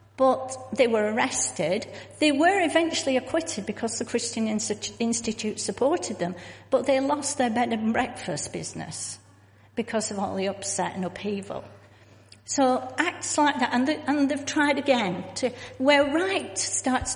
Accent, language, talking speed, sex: British, English, 145 wpm, female